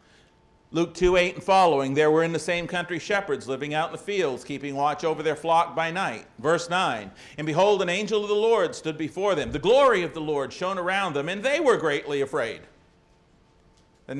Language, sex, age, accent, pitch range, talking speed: English, male, 50-69, American, 135-170 Hz, 210 wpm